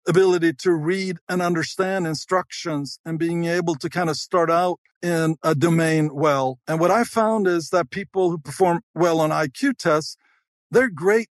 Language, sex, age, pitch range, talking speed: English, male, 50-69, 155-195 Hz, 175 wpm